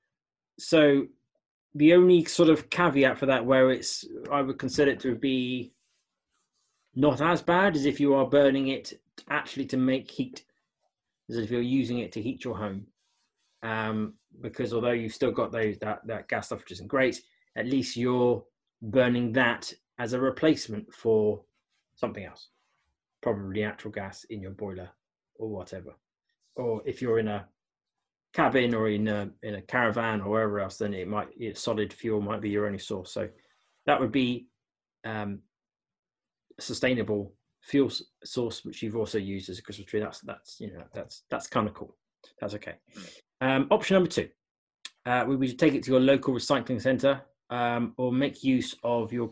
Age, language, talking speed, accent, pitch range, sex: 20-39, English, 180 wpm, British, 110-135 Hz, male